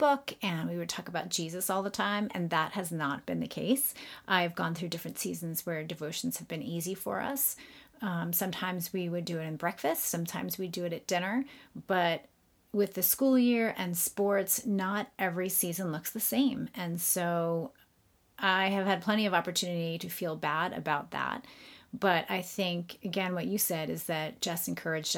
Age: 30-49